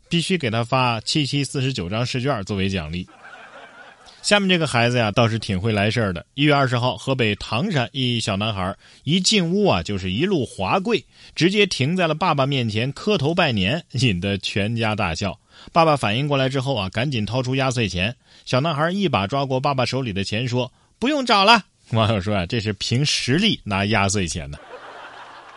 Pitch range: 105-145 Hz